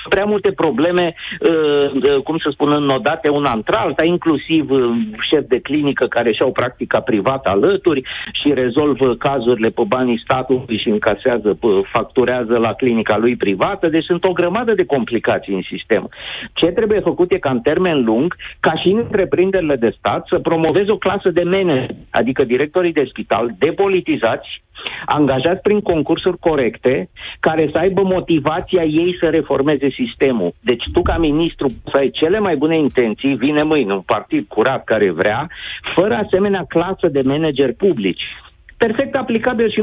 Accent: native